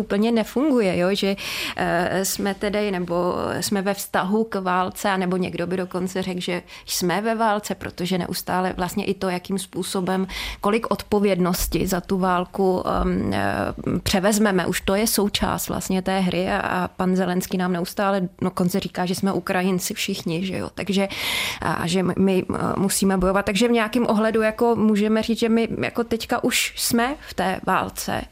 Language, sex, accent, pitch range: Czech, female, native, 185-210 Hz